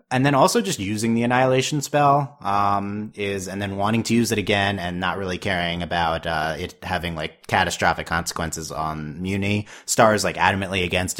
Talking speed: 190 wpm